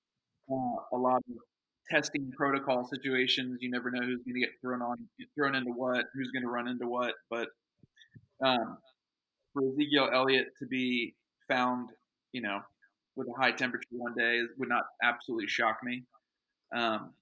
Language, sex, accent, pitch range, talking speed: English, male, American, 115-125 Hz, 165 wpm